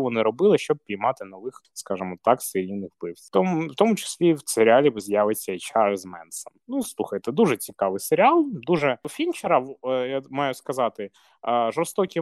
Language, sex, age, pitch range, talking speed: Ukrainian, male, 20-39, 110-165 Hz, 145 wpm